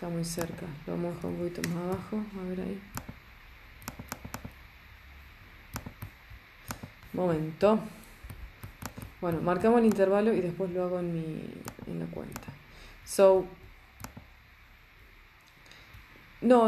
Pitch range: 155-185 Hz